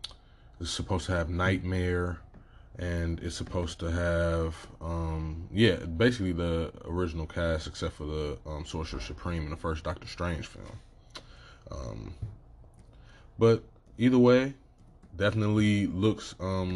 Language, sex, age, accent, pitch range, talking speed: English, male, 20-39, American, 85-105 Hz, 125 wpm